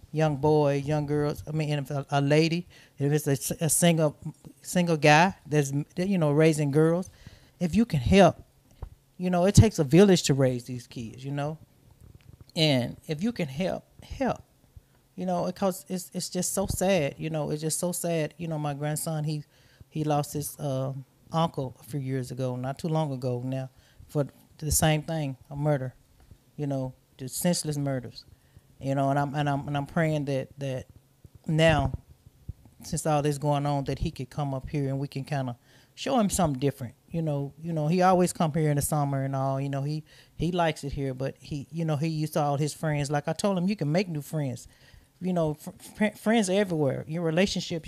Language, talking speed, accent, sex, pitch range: English, 210 wpm, American, male, 135-165 Hz